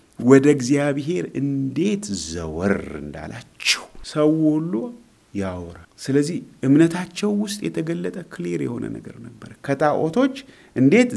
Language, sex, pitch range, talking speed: Amharic, male, 115-180 Hz, 95 wpm